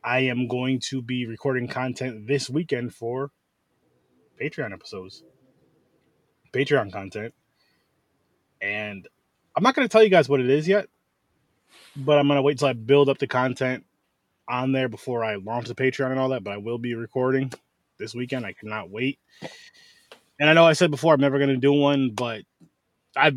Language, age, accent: English, 20-39, American